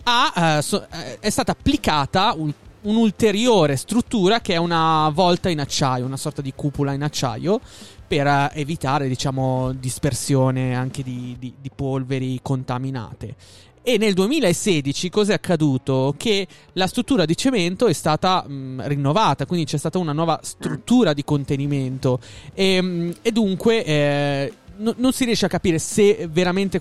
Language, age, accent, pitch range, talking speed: Italian, 20-39, native, 140-180 Hz, 155 wpm